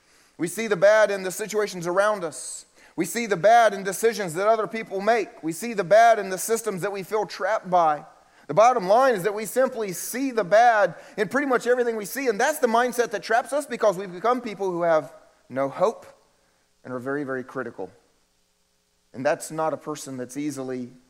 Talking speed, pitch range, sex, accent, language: 210 wpm, 125-195 Hz, male, American, English